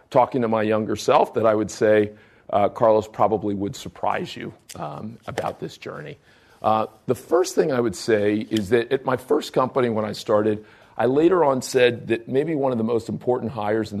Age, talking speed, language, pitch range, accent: 40-59, 205 wpm, English, 105-125 Hz, American